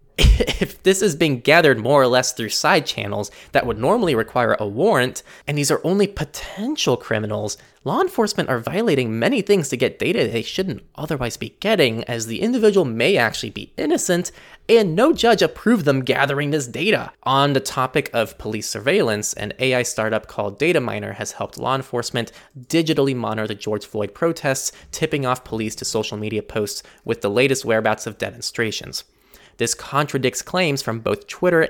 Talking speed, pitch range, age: 175 wpm, 110-145 Hz, 20-39